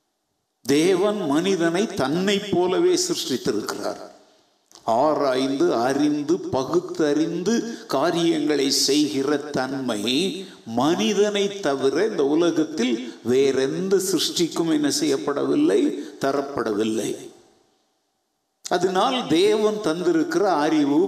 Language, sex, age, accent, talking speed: Tamil, male, 50-69, native, 70 wpm